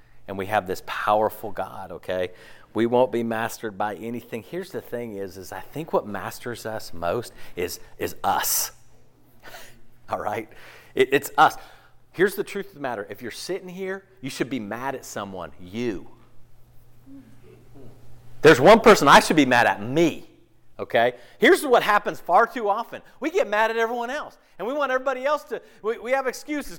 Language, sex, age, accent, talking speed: English, male, 40-59, American, 180 wpm